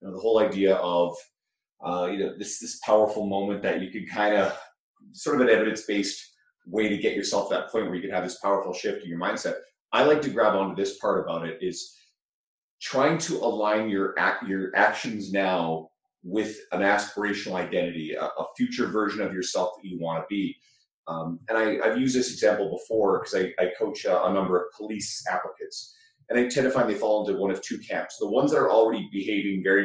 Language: English